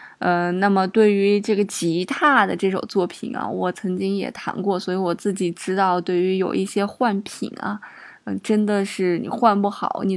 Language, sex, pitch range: Chinese, female, 195-235 Hz